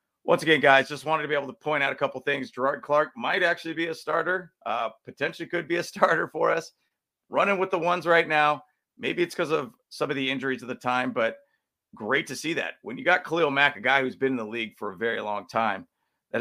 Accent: American